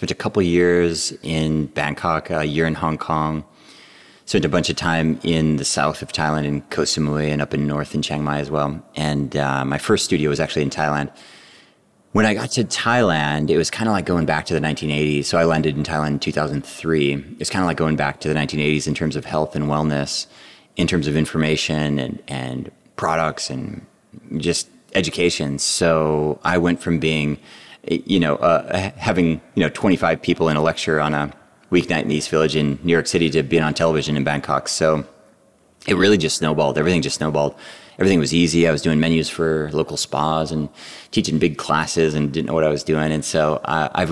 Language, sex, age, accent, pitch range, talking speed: English, male, 30-49, American, 75-80 Hz, 210 wpm